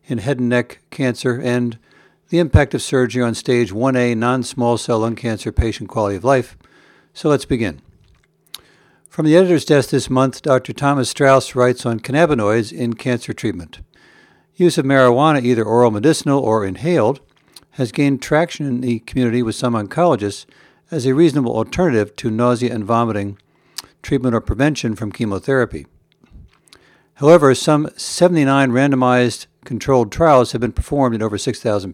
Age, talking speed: 60-79, 150 wpm